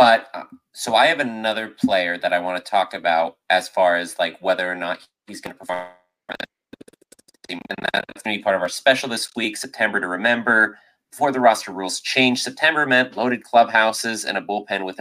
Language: English